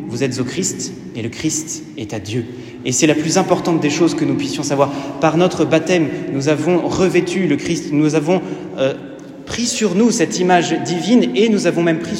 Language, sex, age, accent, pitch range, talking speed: French, male, 30-49, French, 140-170 Hz, 210 wpm